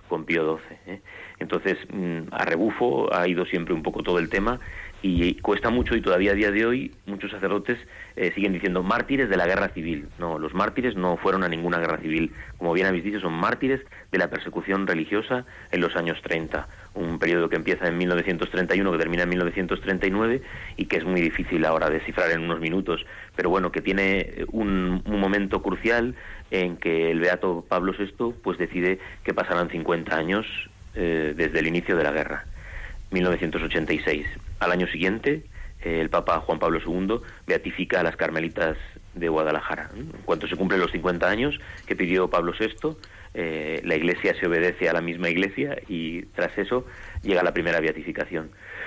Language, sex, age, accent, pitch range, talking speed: Spanish, male, 30-49, Spanish, 85-100 Hz, 180 wpm